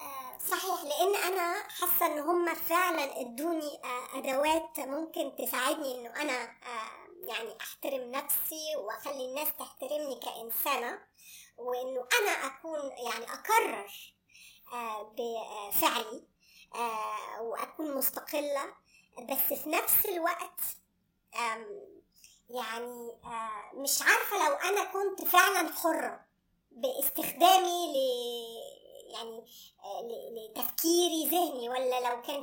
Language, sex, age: Arabic, male, 20-39